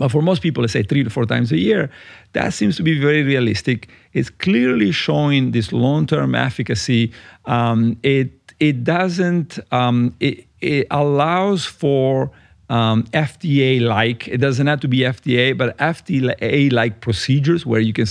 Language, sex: English, male